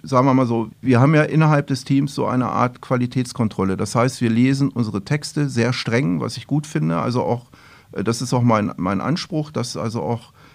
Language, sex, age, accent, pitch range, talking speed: German, male, 40-59, German, 115-140 Hz, 210 wpm